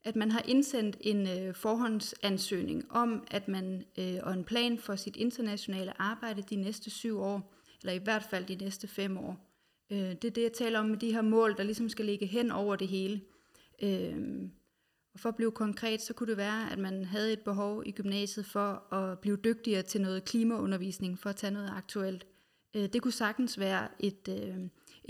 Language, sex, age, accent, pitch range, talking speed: Danish, female, 30-49, native, 190-225 Hz, 205 wpm